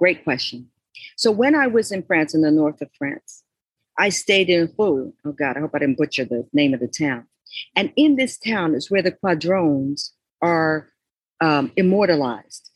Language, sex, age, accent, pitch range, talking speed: English, female, 50-69, American, 150-195 Hz, 190 wpm